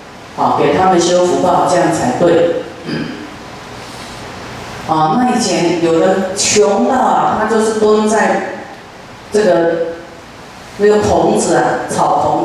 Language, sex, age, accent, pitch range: Chinese, female, 40-59, native, 170-210 Hz